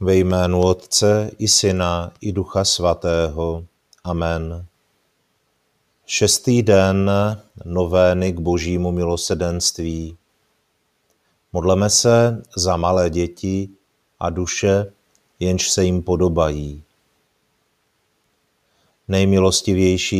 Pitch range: 90-100 Hz